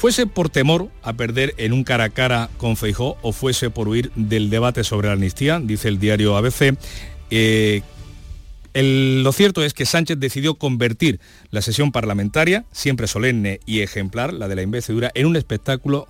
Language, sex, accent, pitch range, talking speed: Spanish, male, Spanish, 100-140 Hz, 180 wpm